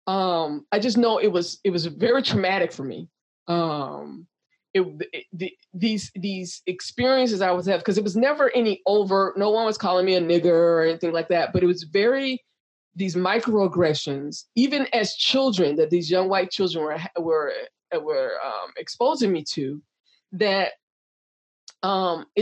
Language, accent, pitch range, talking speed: English, American, 160-220 Hz, 165 wpm